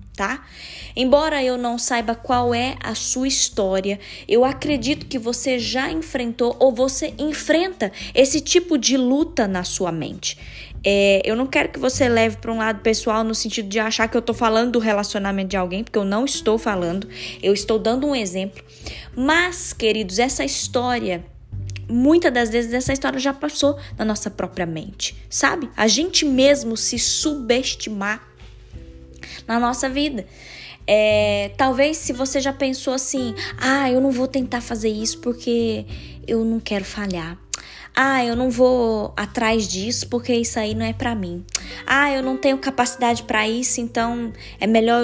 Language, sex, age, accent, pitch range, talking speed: Portuguese, female, 10-29, Brazilian, 195-265 Hz, 165 wpm